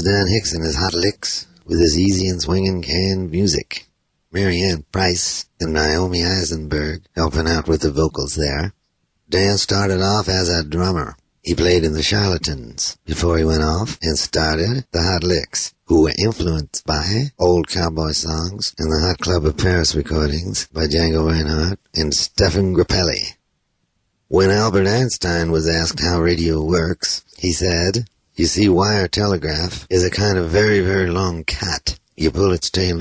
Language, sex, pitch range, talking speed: English, male, 80-95 Hz, 165 wpm